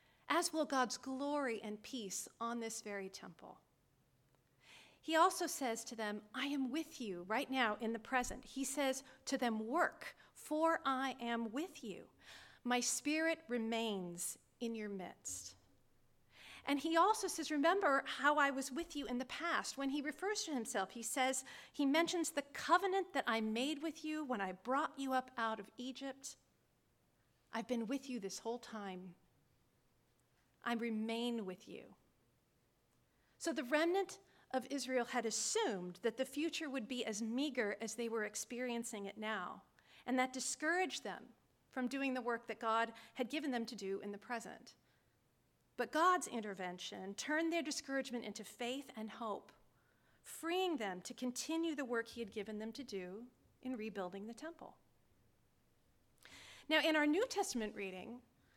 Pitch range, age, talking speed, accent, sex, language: 220-290 Hz, 40-59, 160 wpm, American, female, English